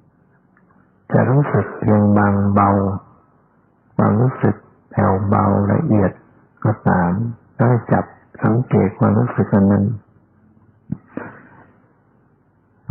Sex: male